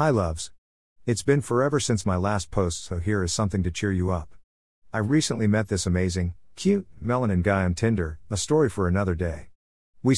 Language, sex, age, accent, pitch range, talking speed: English, male, 50-69, American, 90-115 Hz, 195 wpm